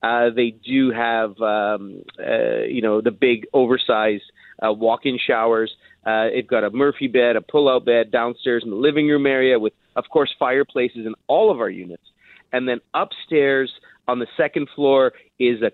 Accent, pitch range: American, 115-145 Hz